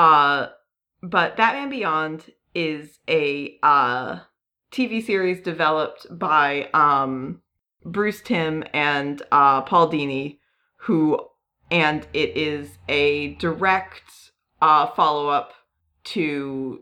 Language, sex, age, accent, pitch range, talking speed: English, female, 30-49, American, 145-190 Hz, 95 wpm